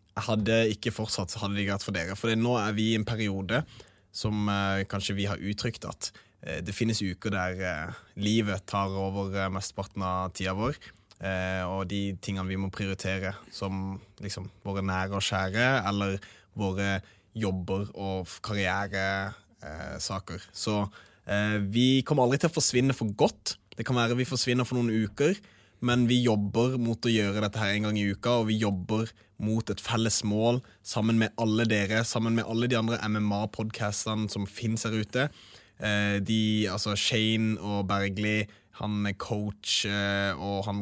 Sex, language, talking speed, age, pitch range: male, English, 155 wpm, 20-39, 100-110 Hz